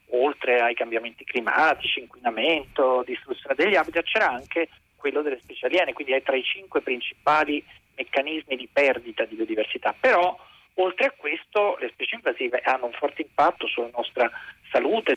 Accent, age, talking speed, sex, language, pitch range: native, 40-59, 155 wpm, male, Italian, 130-190 Hz